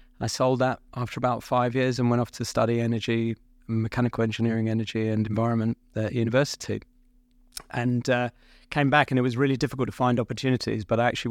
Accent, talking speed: British, 190 wpm